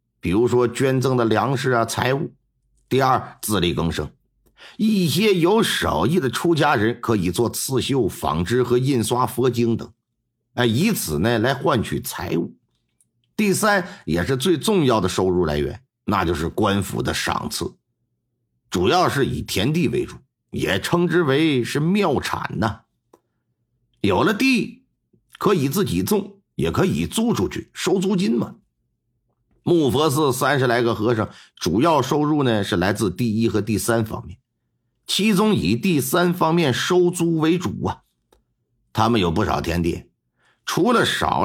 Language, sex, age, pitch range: Chinese, male, 50-69, 115-175 Hz